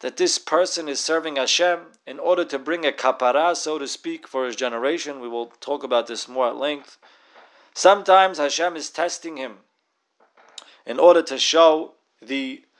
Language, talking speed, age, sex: English, 170 wpm, 30-49, male